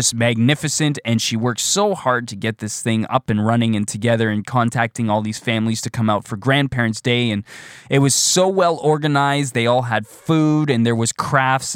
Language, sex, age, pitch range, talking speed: English, male, 20-39, 115-140 Hz, 205 wpm